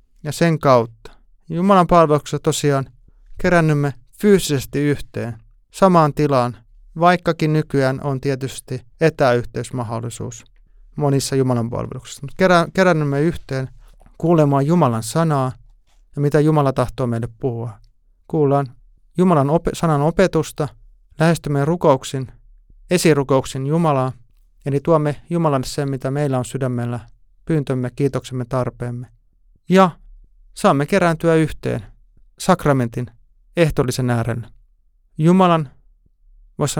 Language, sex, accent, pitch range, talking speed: Finnish, male, native, 120-160 Hz, 100 wpm